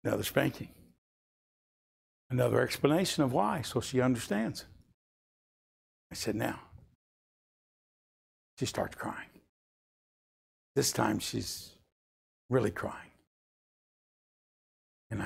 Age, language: 60-79, English